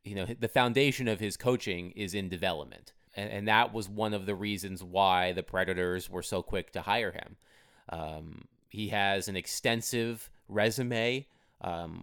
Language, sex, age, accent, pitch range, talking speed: English, male, 30-49, American, 90-115 Hz, 170 wpm